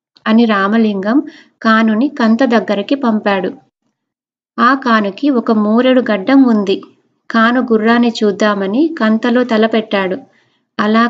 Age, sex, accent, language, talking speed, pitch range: 20-39, female, native, Telugu, 95 wpm, 205-240 Hz